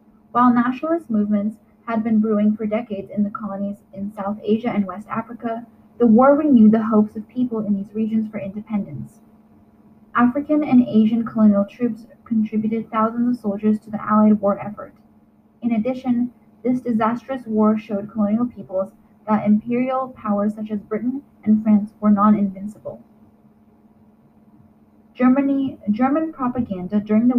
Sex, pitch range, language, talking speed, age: female, 210-235 Hz, English, 140 wpm, 10-29